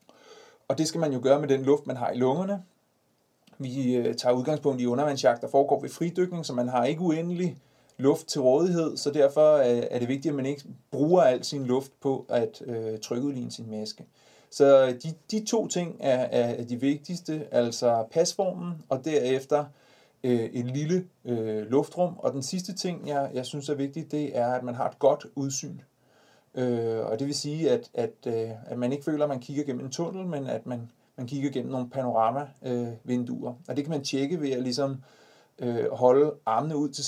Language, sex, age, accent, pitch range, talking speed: Danish, male, 30-49, native, 125-150 Hz, 195 wpm